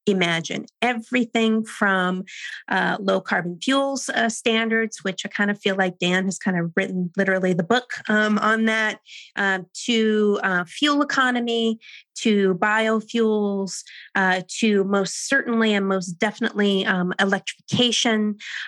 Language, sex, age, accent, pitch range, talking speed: English, female, 30-49, American, 190-225 Hz, 135 wpm